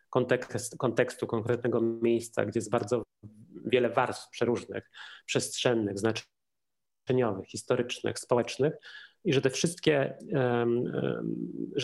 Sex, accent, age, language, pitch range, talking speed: male, native, 30-49, Polish, 120-140 Hz, 95 wpm